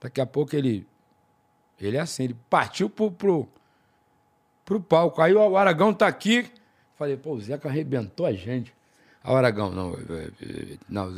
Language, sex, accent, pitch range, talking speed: Portuguese, male, Brazilian, 120-165 Hz, 165 wpm